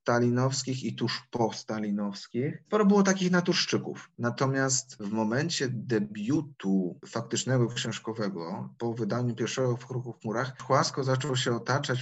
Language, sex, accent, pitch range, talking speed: Polish, male, native, 115-140 Hz, 130 wpm